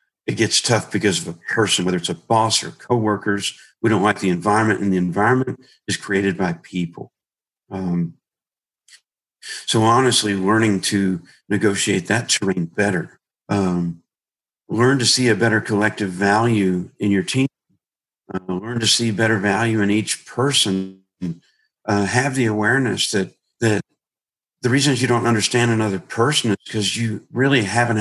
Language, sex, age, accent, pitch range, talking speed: English, male, 50-69, American, 100-120 Hz, 155 wpm